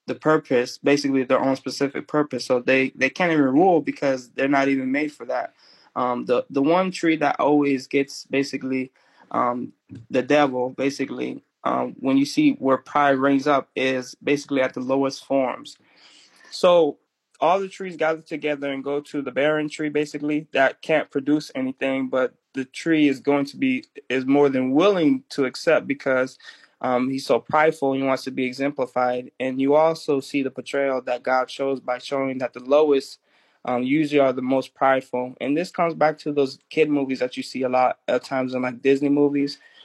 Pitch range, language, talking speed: 130-150 Hz, English, 190 wpm